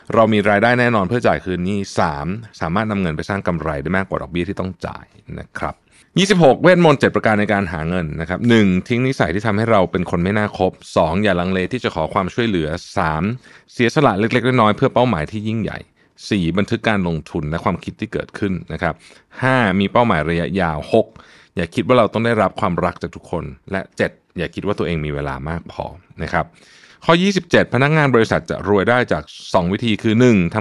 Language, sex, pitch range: Thai, male, 85-115 Hz